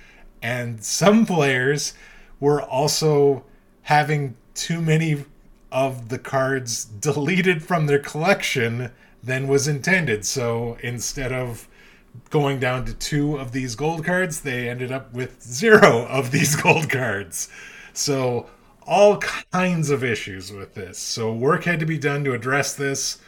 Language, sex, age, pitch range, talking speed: English, male, 30-49, 115-145 Hz, 140 wpm